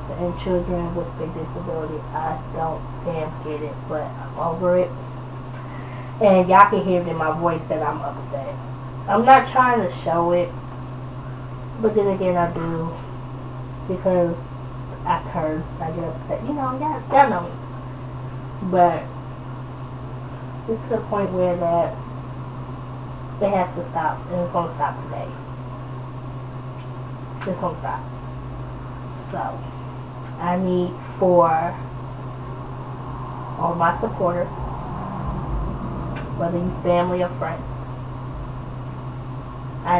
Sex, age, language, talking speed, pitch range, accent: female, 20-39, English, 115 wpm, 130-170 Hz, American